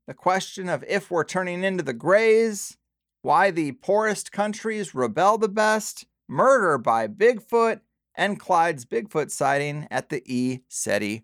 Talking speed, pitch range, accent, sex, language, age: 140 wpm, 115-185 Hz, American, male, English, 30-49